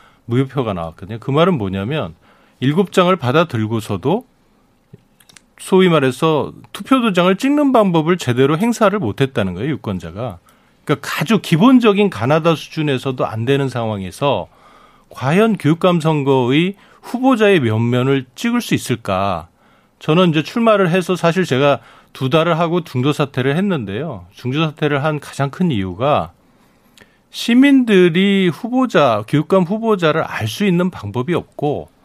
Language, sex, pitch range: Korean, male, 125-180 Hz